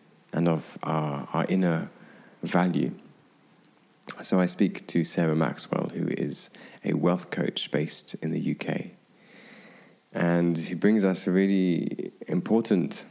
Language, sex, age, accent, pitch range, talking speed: English, male, 20-39, British, 80-90 Hz, 130 wpm